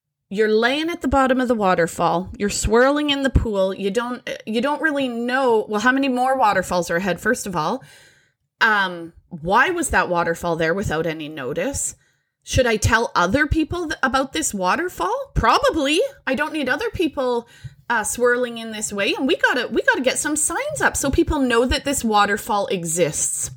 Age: 20-39